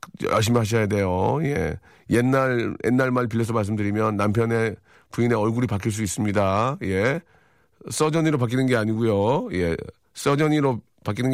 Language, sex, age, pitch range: Korean, male, 40-59, 105-145 Hz